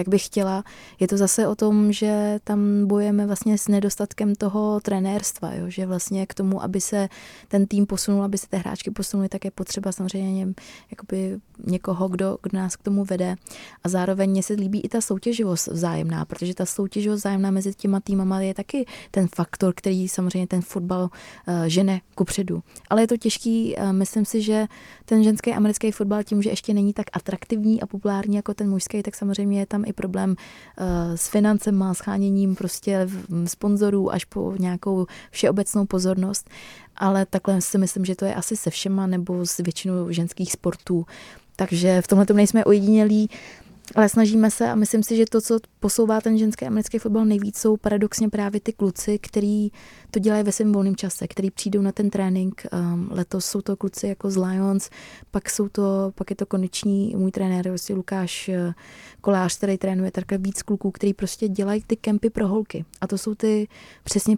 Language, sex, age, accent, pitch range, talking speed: Czech, female, 20-39, native, 190-210 Hz, 185 wpm